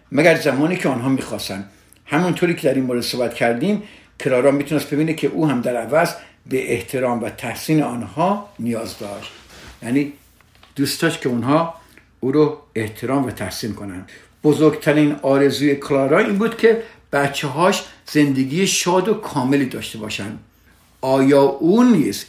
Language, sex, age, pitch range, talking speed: Persian, male, 60-79, 115-155 Hz, 145 wpm